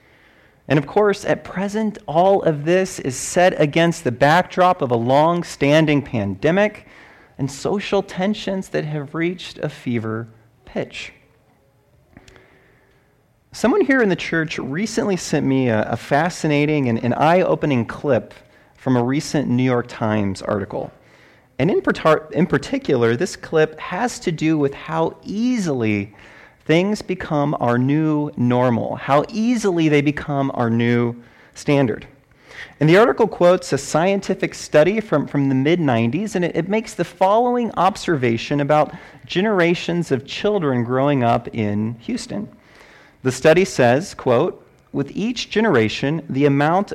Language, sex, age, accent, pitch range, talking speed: English, male, 30-49, American, 130-185 Hz, 135 wpm